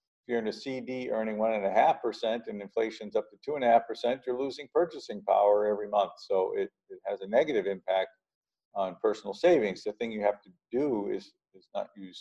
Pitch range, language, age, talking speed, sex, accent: 105-175 Hz, English, 50-69, 225 wpm, male, American